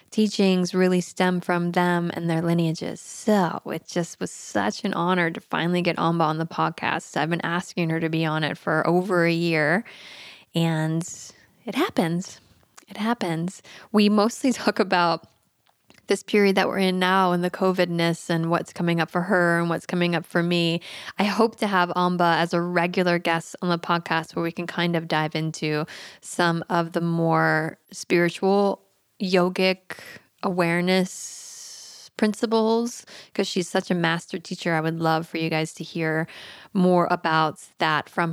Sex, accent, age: female, American, 20-39